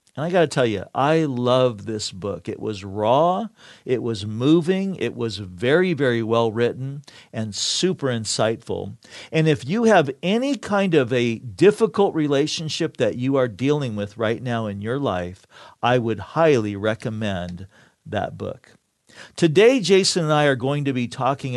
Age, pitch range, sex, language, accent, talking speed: 50-69, 115-160 Hz, male, English, American, 165 wpm